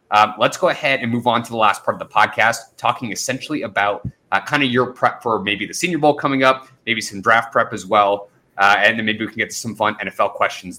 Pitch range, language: 115-140 Hz, English